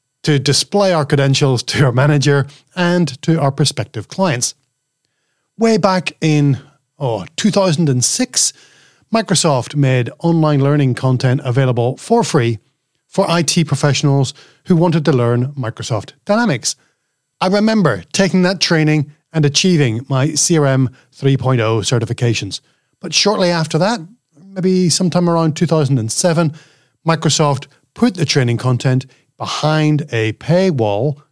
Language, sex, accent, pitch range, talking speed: English, male, Irish, 130-170 Hz, 115 wpm